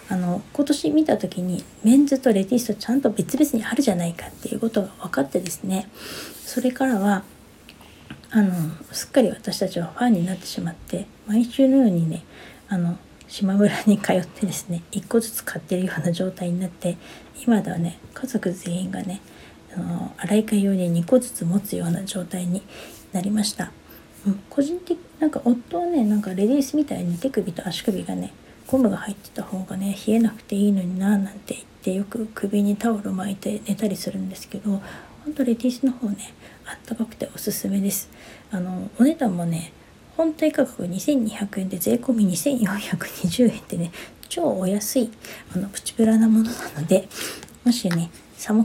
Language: Japanese